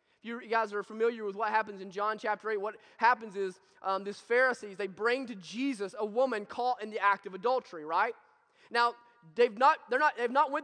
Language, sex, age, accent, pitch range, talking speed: English, male, 20-39, American, 220-295 Hz, 215 wpm